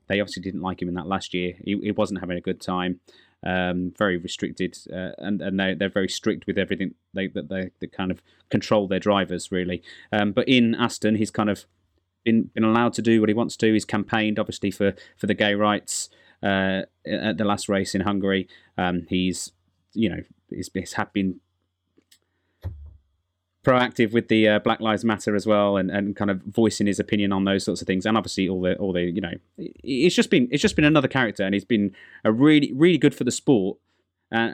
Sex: male